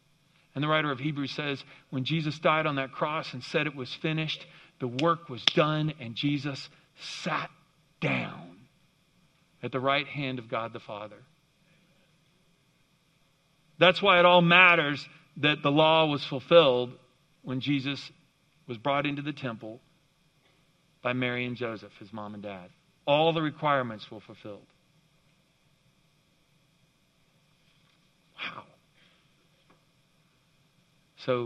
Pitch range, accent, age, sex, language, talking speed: 130-160 Hz, American, 50-69, male, English, 125 wpm